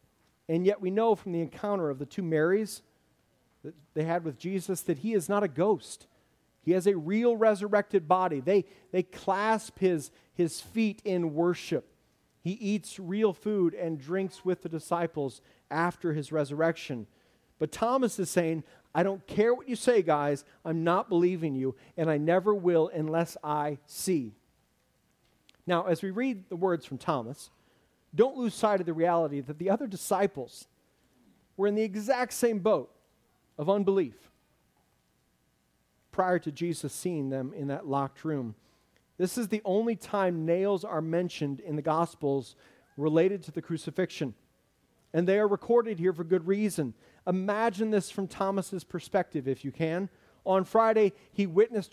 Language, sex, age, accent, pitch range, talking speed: English, male, 40-59, American, 155-205 Hz, 160 wpm